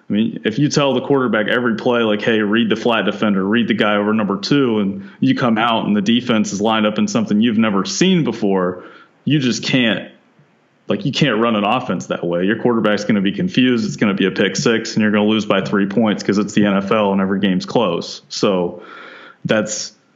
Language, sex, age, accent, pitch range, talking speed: English, male, 30-49, American, 100-120 Hz, 235 wpm